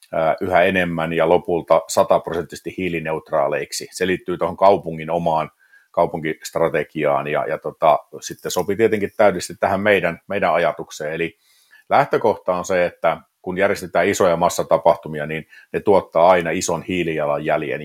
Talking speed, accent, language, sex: 130 wpm, native, Finnish, male